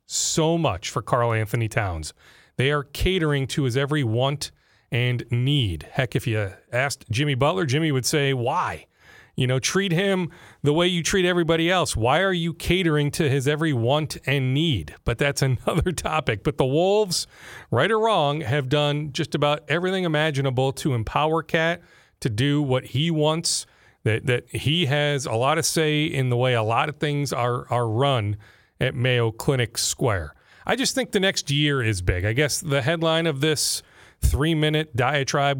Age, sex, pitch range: 40-59, male, 130-155 Hz